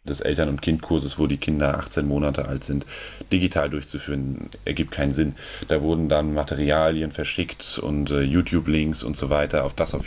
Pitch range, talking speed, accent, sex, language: 80-95 Hz, 180 wpm, German, male, German